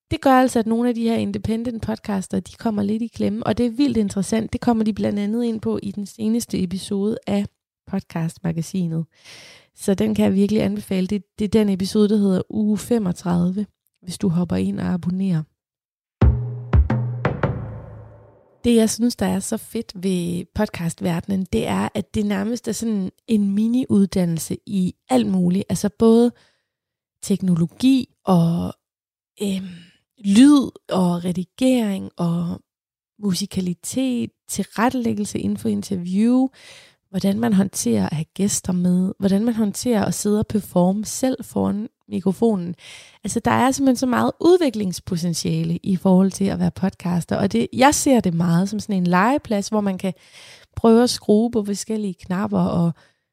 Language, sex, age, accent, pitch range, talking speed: Danish, female, 20-39, native, 180-225 Hz, 155 wpm